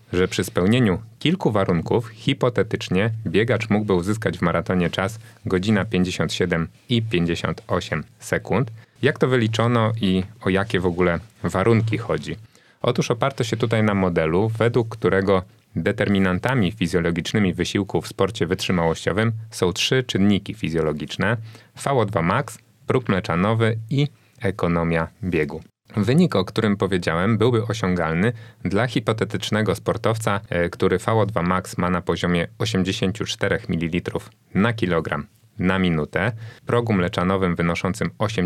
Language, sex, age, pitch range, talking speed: Polish, male, 30-49, 90-115 Hz, 115 wpm